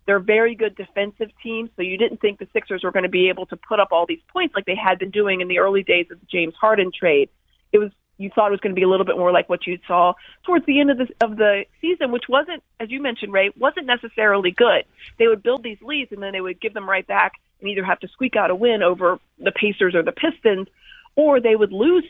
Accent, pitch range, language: American, 175-225 Hz, English